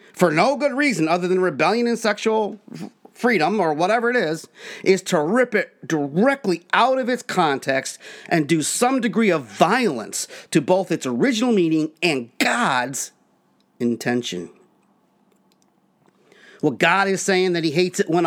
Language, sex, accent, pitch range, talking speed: English, male, American, 140-195 Hz, 150 wpm